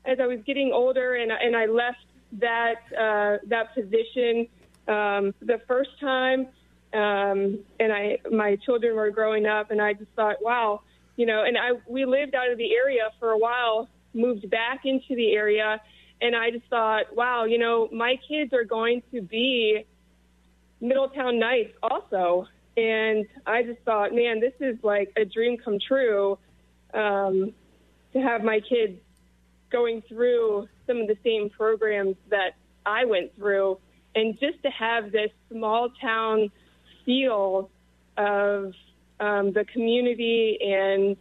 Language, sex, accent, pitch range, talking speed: English, female, American, 205-240 Hz, 150 wpm